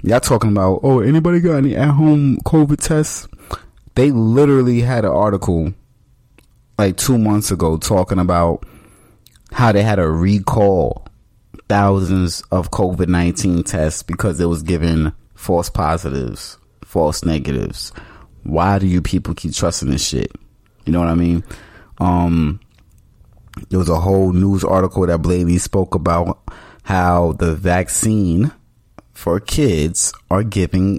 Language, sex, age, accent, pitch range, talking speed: English, male, 30-49, American, 90-120 Hz, 135 wpm